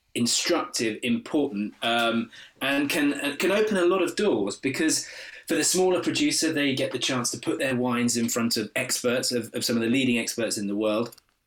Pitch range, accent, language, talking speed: 120-170 Hz, British, English, 205 wpm